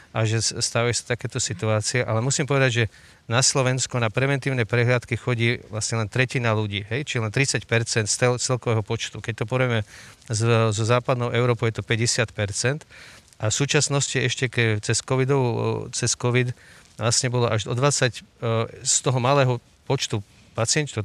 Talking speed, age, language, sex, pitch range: 155 wpm, 40-59, Slovak, male, 110-130 Hz